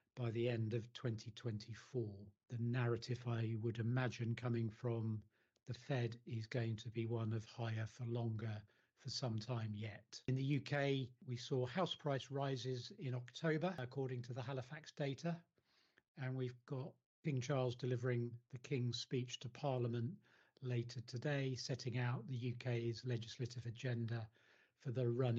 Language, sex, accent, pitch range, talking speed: English, male, British, 120-135 Hz, 150 wpm